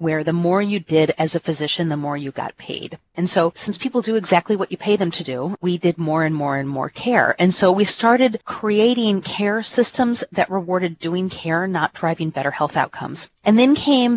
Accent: American